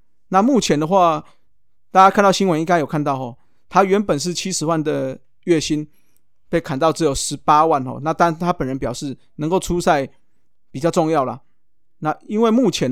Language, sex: Chinese, male